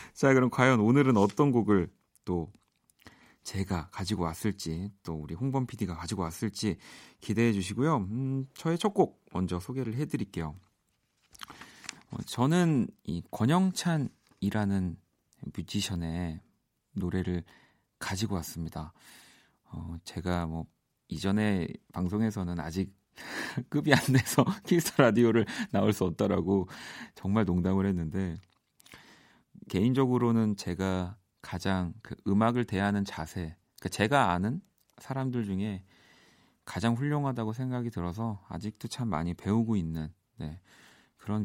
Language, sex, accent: Korean, male, native